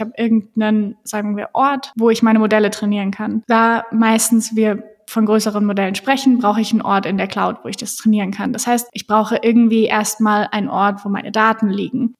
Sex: female